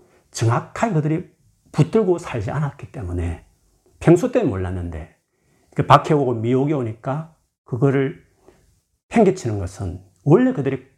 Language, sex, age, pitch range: Korean, male, 40-59, 100-140 Hz